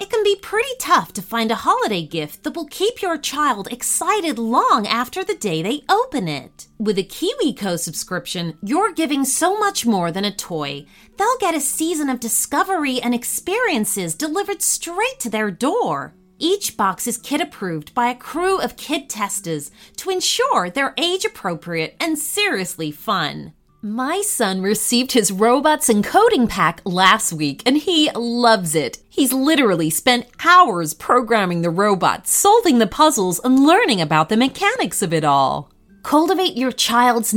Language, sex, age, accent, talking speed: English, female, 30-49, American, 160 wpm